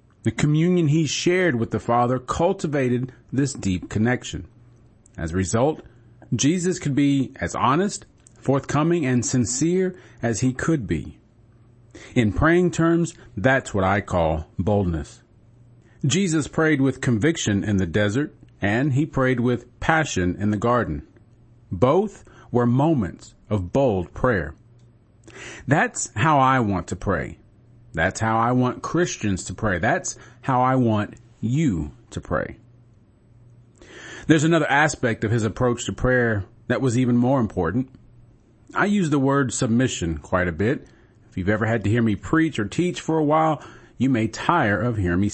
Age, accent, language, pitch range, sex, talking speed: 40-59, American, English, 110-135 Hz, male, 150 wpm